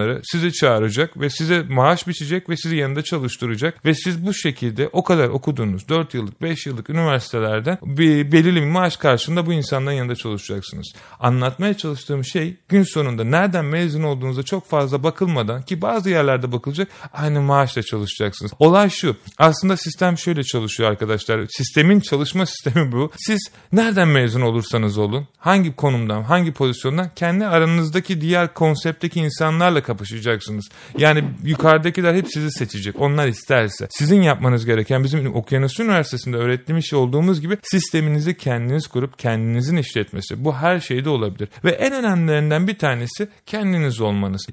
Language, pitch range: Turkish, 120-170 Hz